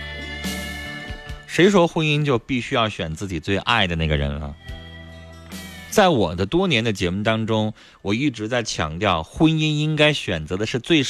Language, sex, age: Chinese, male, 30-49